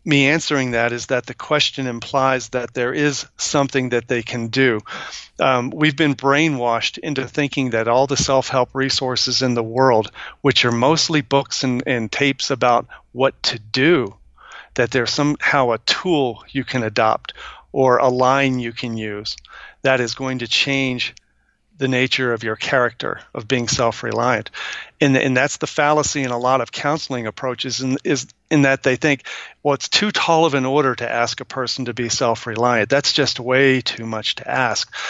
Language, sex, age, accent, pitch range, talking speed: English, male, 40-59, American, 120-140 Hz, 180 wpm